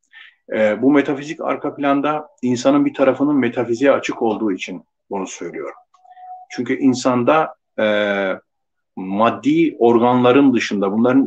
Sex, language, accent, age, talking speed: male, Turkish, native, 50-69, 100 wpm